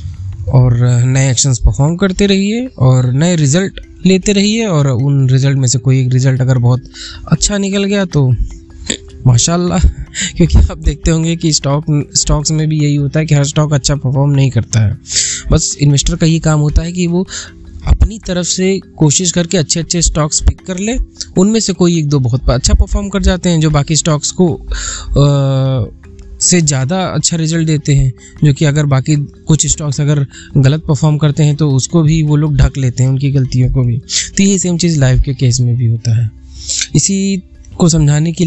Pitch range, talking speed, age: 125-170 Hz, 195 wpm, 20-39